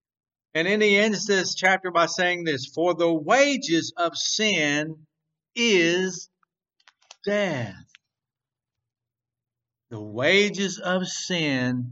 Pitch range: 125-175 Hz